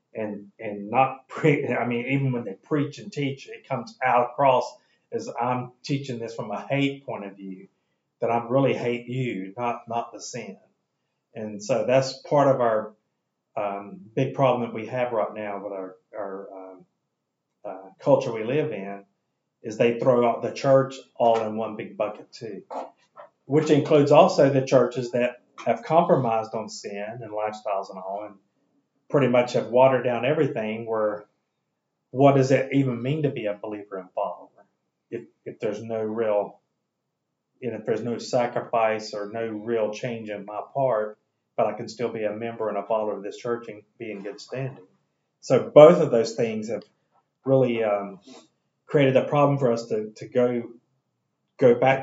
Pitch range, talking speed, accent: 105-130 Hz, 180 wpm, American